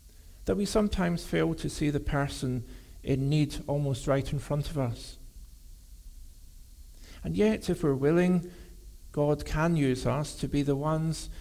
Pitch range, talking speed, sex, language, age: 90-145 Hz, 155 wpm, male, English, 50-69